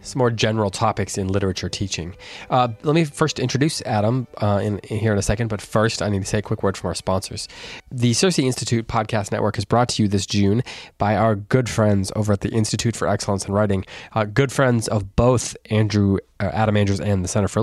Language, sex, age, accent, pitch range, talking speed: English, male, 20-39, American, 100-120 Hz, 230 wpm